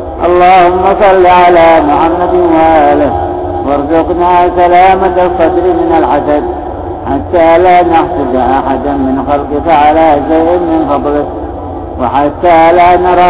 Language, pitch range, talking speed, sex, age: Arabic, 145-175 Hz, 105 wpm, male, 50-69